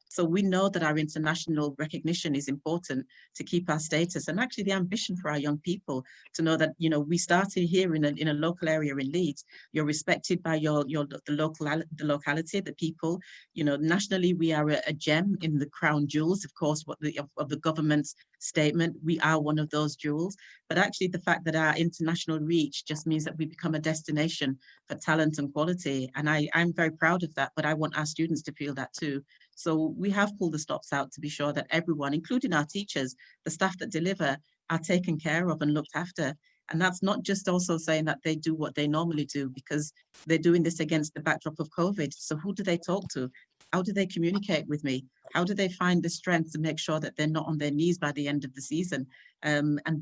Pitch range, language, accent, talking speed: 150-170 Hz, English, British, 230 wpm